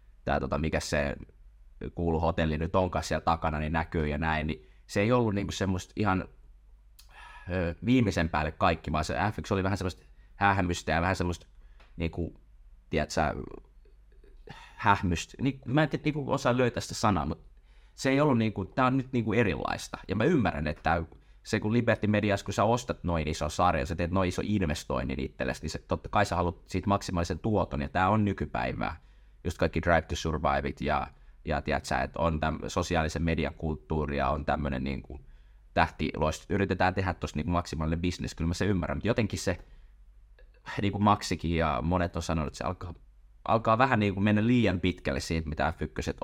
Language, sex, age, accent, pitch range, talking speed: Finnish, male, 30-49, native, 75-100 Hz, 180 wpm